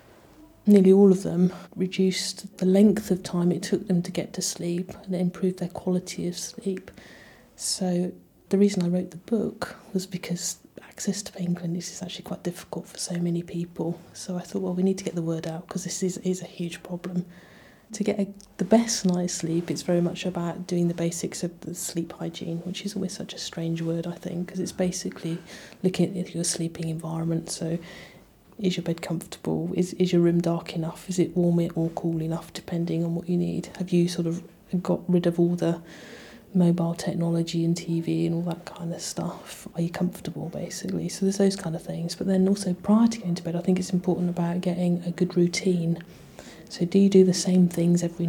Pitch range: 170-185 Hz